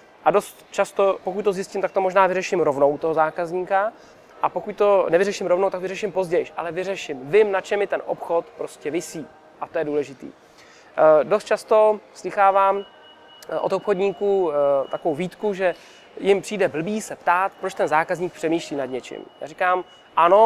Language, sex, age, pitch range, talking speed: Czech, male, 20-39, 160-200 Hz, 175 wpm